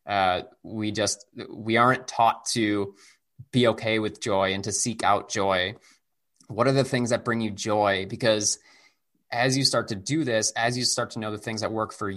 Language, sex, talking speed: English, male, 200 wpm